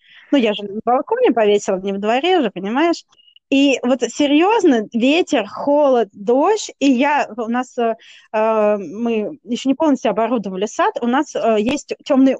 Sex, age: female, 20-39